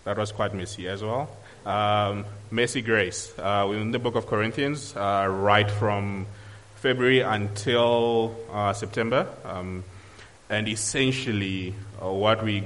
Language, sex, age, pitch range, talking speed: English, male, 20-39, 100-110 Hz, 135 wpm